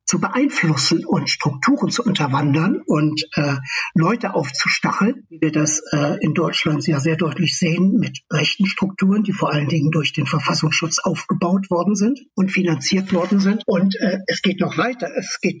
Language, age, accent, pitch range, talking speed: German, 60-79, German, 160-195 Hz, 175 wpm